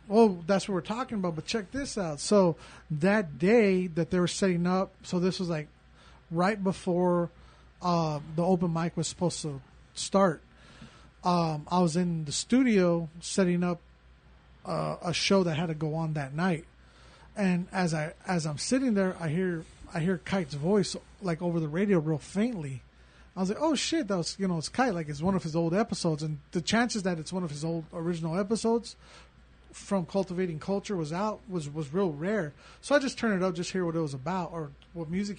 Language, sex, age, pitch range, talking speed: English, male, 30-49, 165-200 Hz, 210 wpm